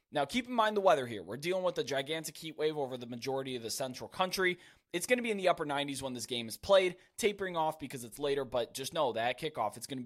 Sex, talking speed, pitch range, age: male, 280 wpm, 130-180 Hz, 20-39